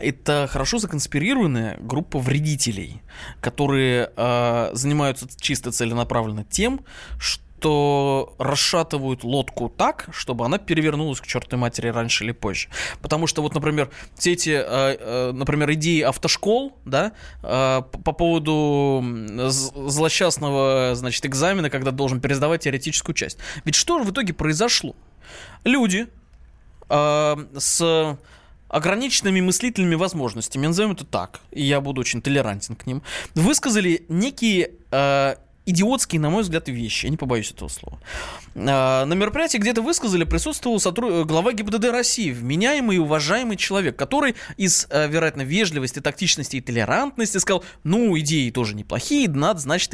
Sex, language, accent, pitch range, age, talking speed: male, Russian, native, 130-185 Hz, 20-39, 135 wpm